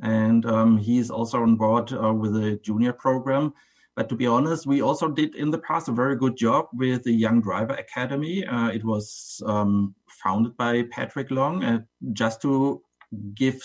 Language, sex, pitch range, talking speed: English, male, 115-135 Hz, 185 wpm